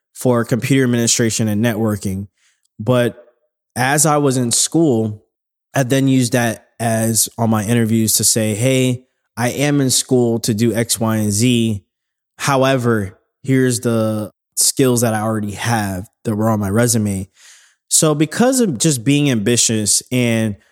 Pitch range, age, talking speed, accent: 110-130 Hz, 20-39, 150 wpm, American